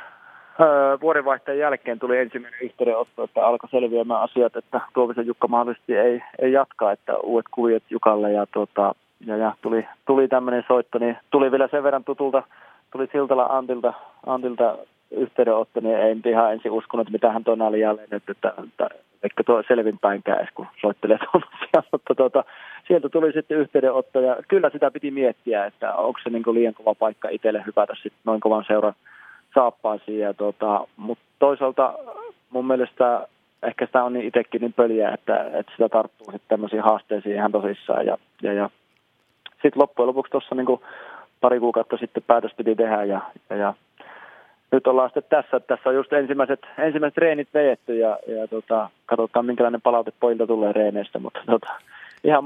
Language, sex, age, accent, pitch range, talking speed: Finnish, male, 30-49, native, 110-135 Hz, 160 wpm